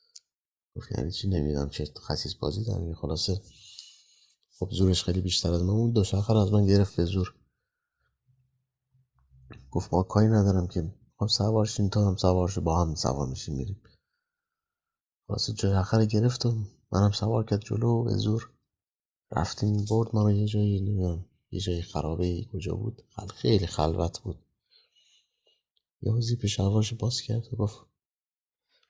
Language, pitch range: Persian, 90-115 Hz